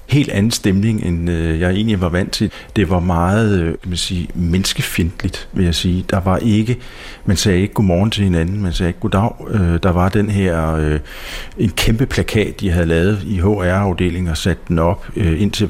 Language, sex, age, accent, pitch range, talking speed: Danish, male, 60-79, native, 85-105 Hz, 180 wpm